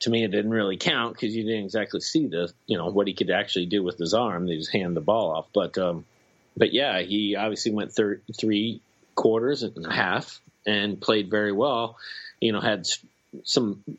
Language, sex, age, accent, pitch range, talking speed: English, male, 30-49, American, 100-115 Hz, 215 wpm